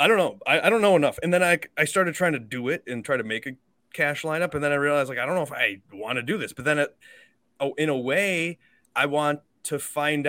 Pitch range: 125-155 Hz